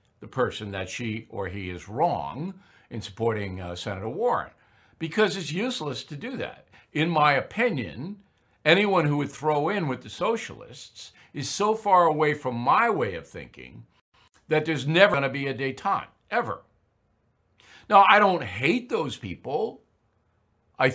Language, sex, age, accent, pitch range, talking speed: English, male, 60-79, American, 110-165 Hz, 160 wpm